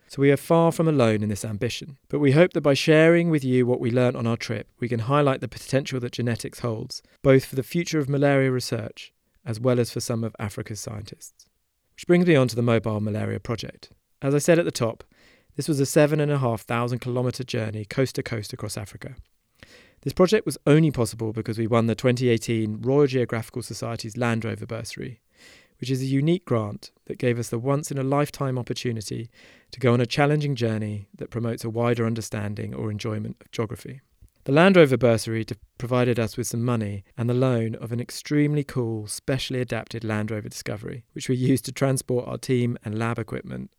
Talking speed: 200 wpm